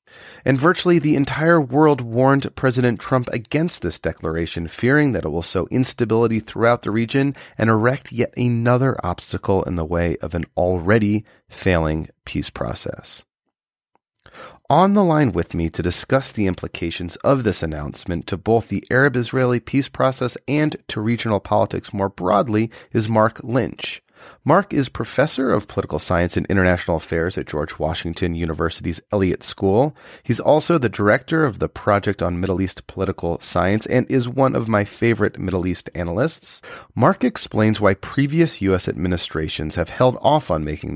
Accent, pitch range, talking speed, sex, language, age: American, 90-130 Hz, 160 wpm, male, English, 30-49